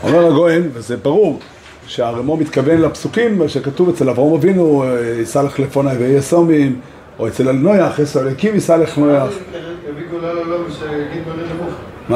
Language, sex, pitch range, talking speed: Hebrew, male, 125-170 Hz, 120 wpm